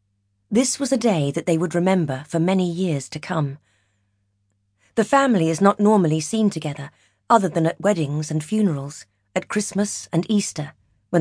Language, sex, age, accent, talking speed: English, female, 40-59, British, 165 wpm